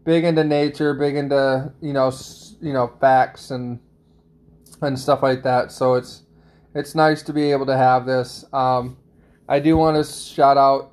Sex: male